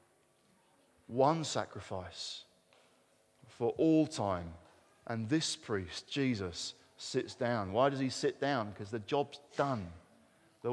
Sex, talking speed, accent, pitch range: male, 115 wpm, British, 125-170 Hz